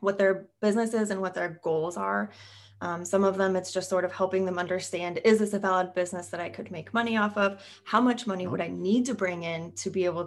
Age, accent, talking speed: 20-39, American, 255 wpm